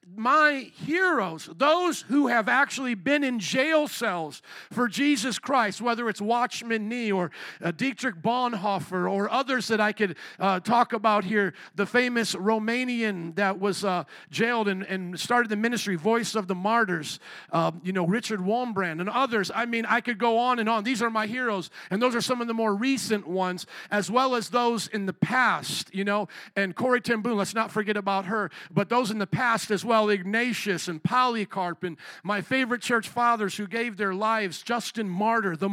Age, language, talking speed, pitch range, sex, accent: 50-69, English, 190 wpm, 200-250 Hz, male, American